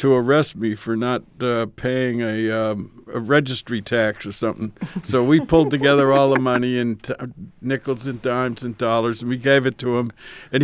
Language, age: English, 60-79